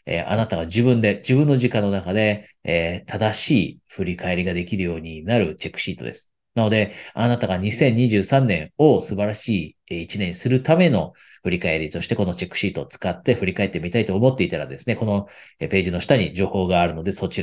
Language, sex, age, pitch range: Japanese, male, 40-59, 90-125 Hz